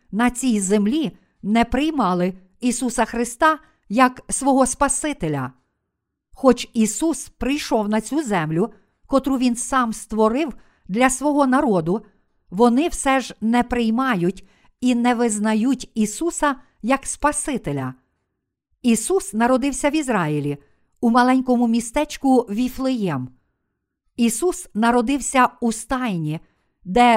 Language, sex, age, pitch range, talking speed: Ukrainian, female, 50-69, 210-265 Hz, 105 wpm